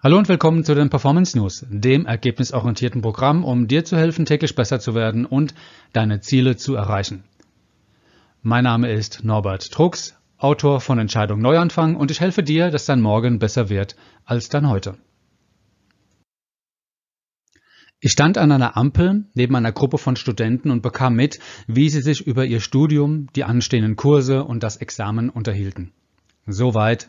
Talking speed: 155 wpm